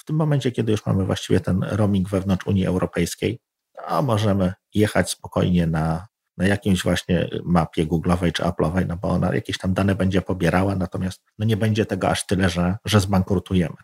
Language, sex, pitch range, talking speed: Polish, male, 90-115 Hz, 185 wpm